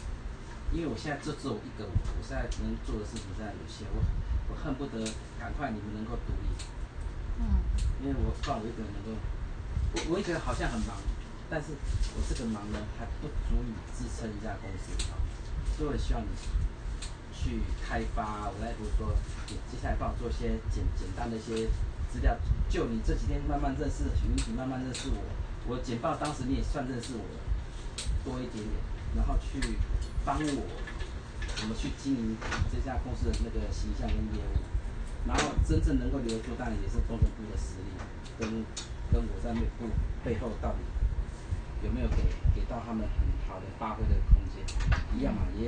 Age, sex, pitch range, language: 30-49, male, 80-110 Hz, Chinese